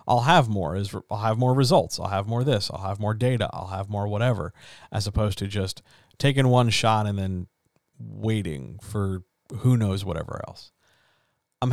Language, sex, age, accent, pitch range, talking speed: English, male, 40-59, American, 105-130 Hz, 185 wpm